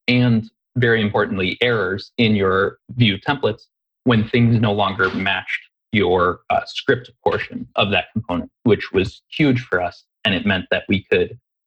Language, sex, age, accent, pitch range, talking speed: English, male, 20-39, American, 100-120 Hz, 160 wpm